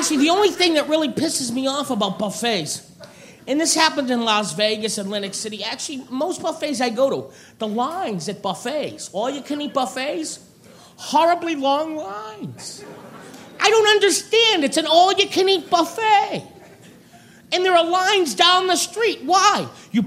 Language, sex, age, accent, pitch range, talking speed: English, male, 40-59, American, 240-350 Hz, 155 wpm